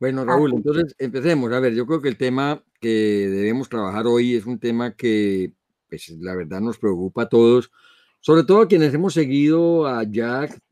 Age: 50-69